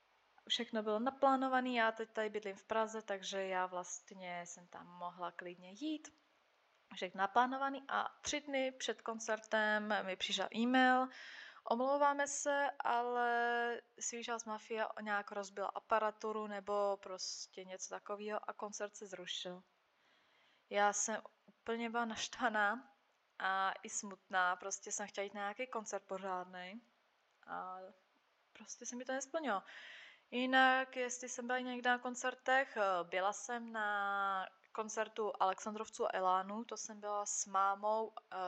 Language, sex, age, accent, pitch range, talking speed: Czech, female, 20-39, native, 195-235 Hz, 135 wpm